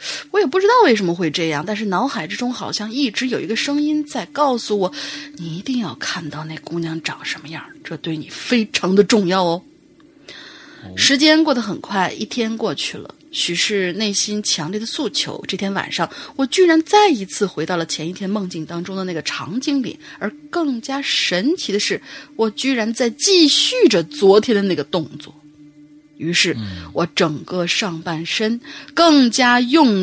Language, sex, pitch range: Chinese, female, 185-295 Hz